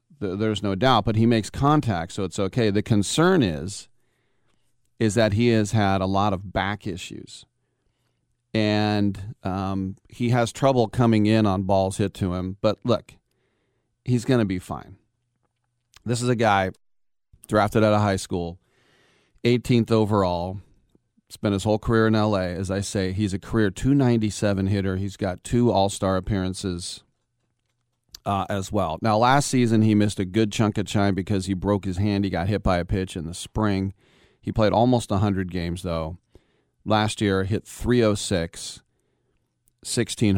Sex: male